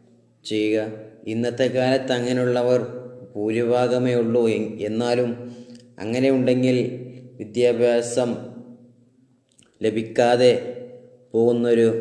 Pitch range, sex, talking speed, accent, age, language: 110-120 Hz, male, 60 wpm, Indian, 20-39, English